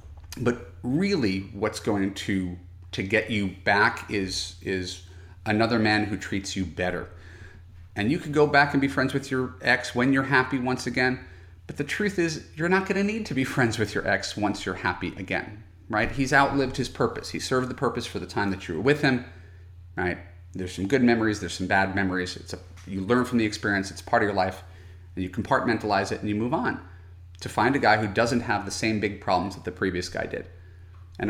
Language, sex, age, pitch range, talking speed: English, male, 30-49, 90-125 Hz, 220 wpm